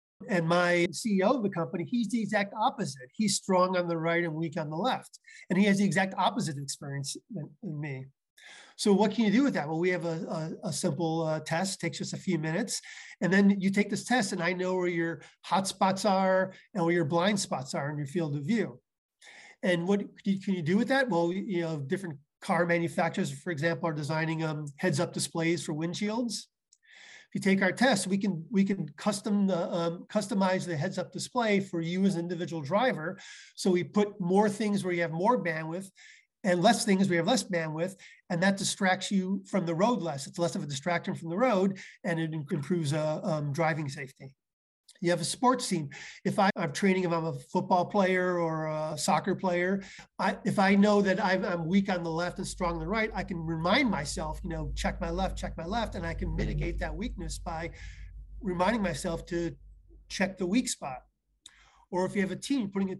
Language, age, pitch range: English, 30-49, 165-200 Hz